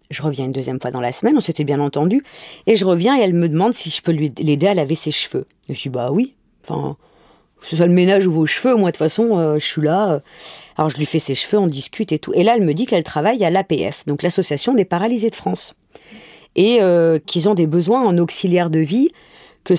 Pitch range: 165-210 Hz